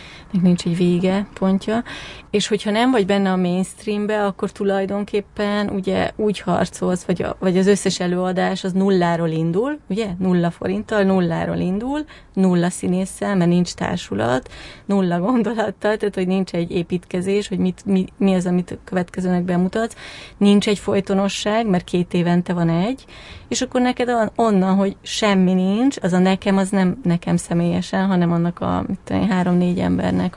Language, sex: Hungarian, female